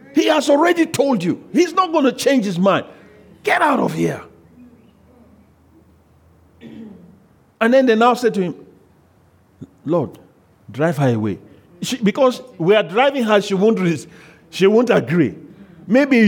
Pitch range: 155-255 Hz